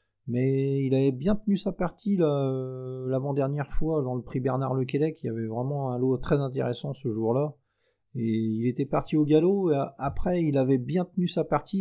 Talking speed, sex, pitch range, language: 200 wpm, male, 115-145 Hz, French